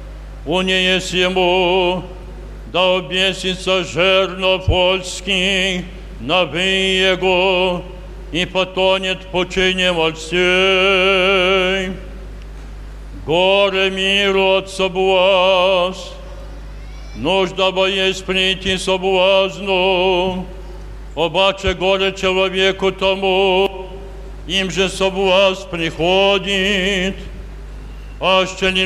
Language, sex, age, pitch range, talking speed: Polish, male, 60-79, 185-190 Hz, 70 wpm